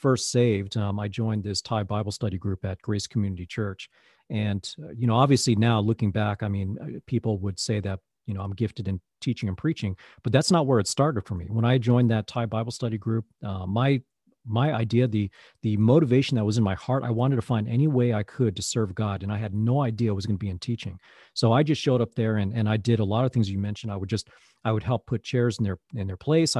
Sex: male